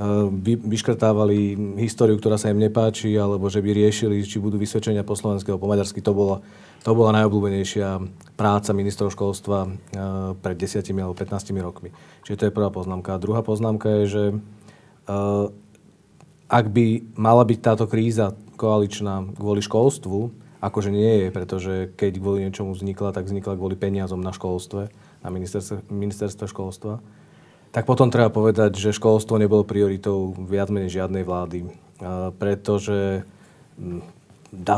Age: 40-59